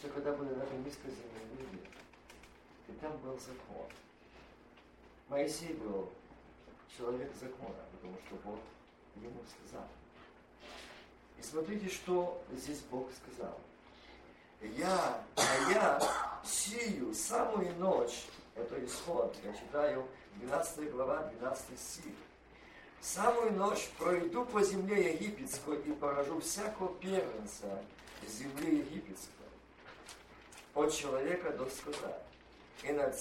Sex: male